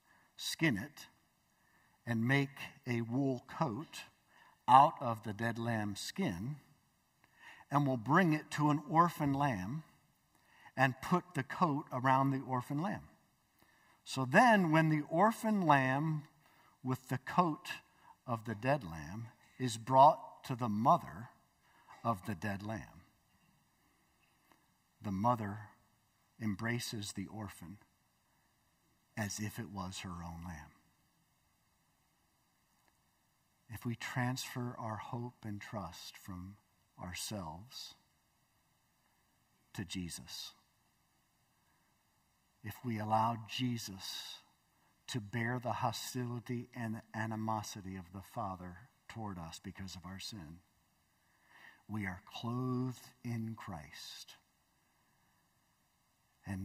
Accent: American